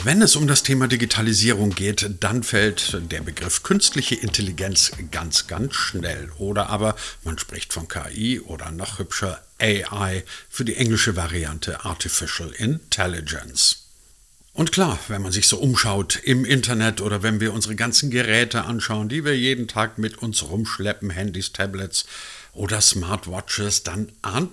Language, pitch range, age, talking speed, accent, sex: German, 95-125 Hz, 50-69, 150 wpm, German, male